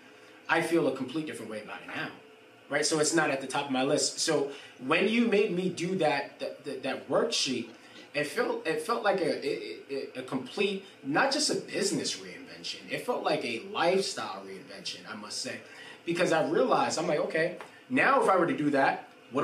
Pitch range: 135-175 Hz